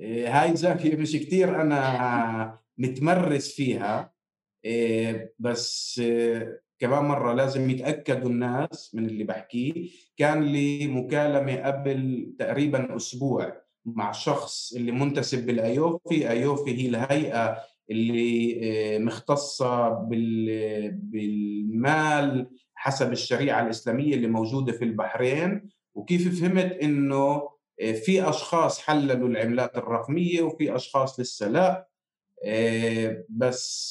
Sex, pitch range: male, 115-150 Hz